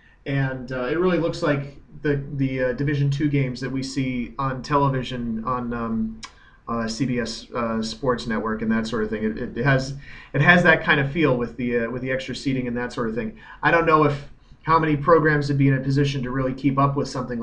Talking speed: 235 wpm